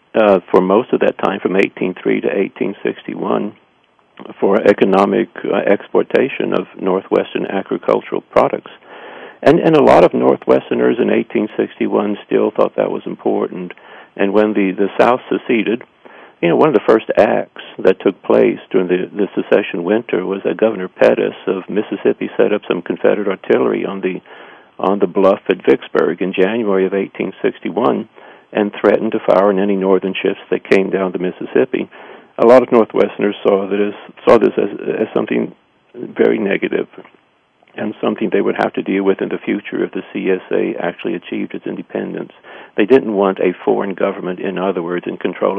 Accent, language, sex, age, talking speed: American, English, male, 50-69, 180 wpm